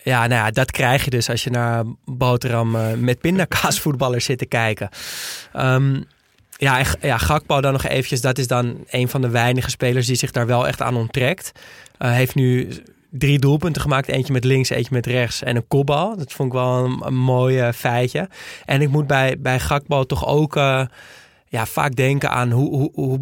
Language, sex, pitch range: Dutch, male, 125-140 Hz